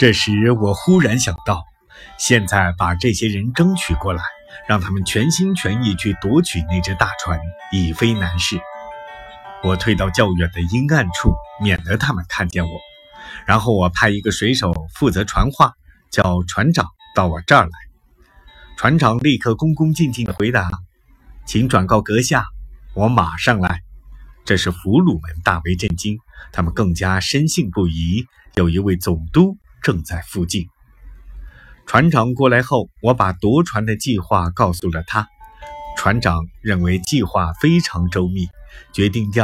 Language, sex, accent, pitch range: Chinese, male, native, 90-125 Hz